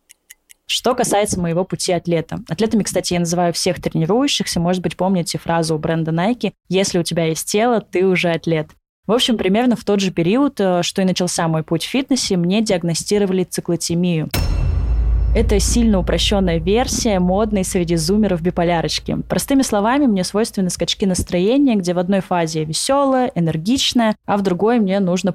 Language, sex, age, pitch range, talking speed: Russian, female, 20-39, 170-205 Hz, 160 wpm